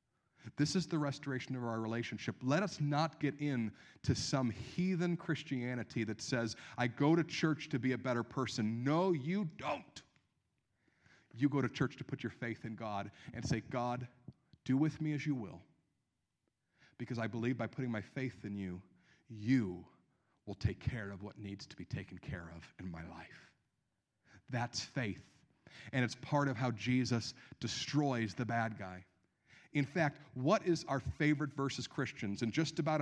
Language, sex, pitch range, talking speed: Dutch, male, 115-155 Hz, 175 wpm